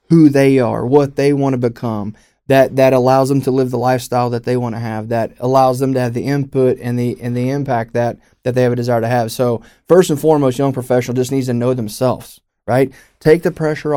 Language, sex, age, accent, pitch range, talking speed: English, male, 30-49, American, 120-140 Hz, 240 wpm